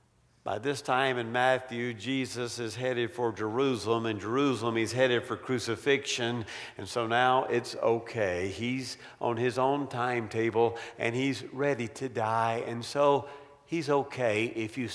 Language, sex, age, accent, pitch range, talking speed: English, male, 50-69, American, 115-160 Hz, 150 wpm